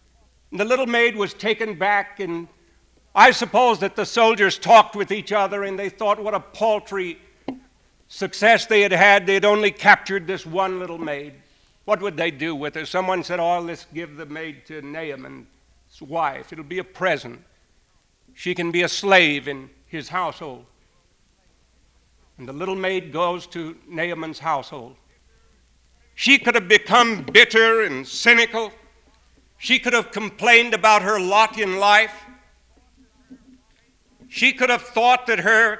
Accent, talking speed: American, 155 wpm